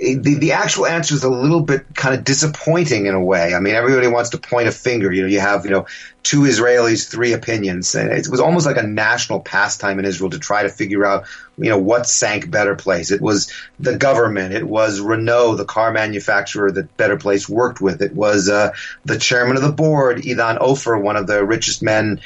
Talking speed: 225 wpm